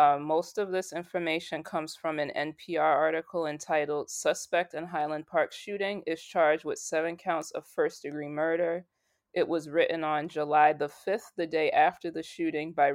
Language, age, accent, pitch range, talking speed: English, 20-39, American, 150-180 Hz, 170 wpm